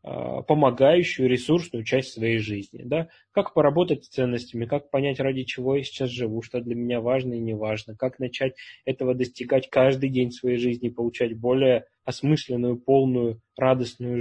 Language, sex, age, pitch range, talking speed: Russian, male, 20-39, 115-130 Hz, 155 wpm